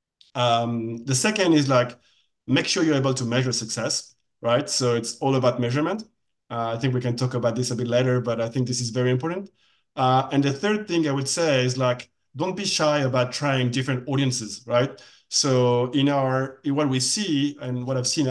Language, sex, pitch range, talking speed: English, male, 120-140 Hz, 210 wpm